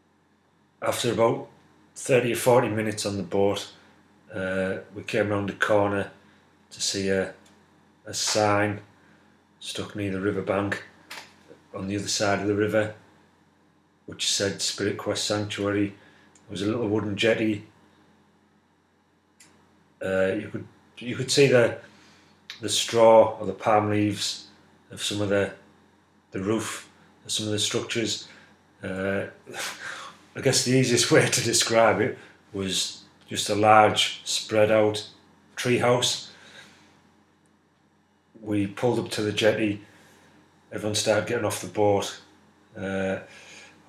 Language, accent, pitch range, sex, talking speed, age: English, British, 100-110 Hz, male, 130 wpm, 30-49